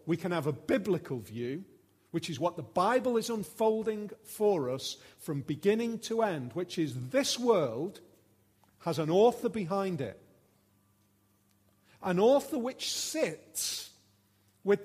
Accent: British